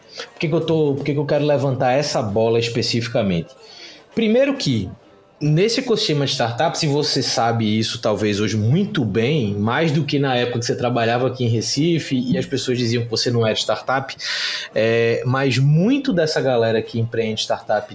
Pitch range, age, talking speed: 120-165 Hz, 20-39, 185 wpm